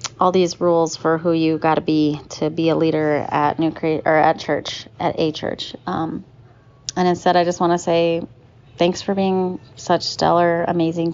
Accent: American